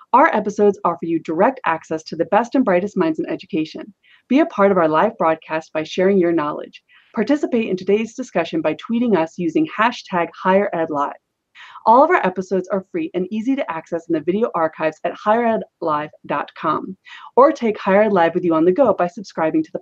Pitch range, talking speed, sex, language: 175-240 Hz, 195 wpm, female, English